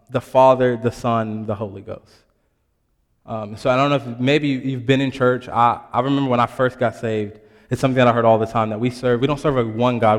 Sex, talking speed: male, 245 wpm